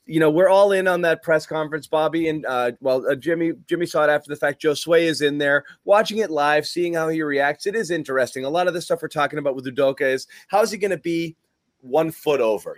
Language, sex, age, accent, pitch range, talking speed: English, male, 30-49, American, 135-175 Hz, 265 wpm